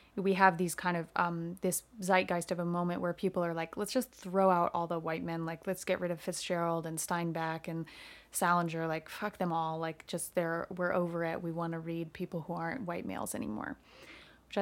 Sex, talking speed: female, 220 wpm